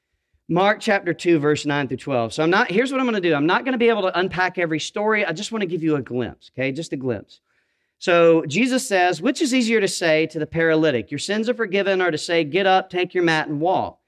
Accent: American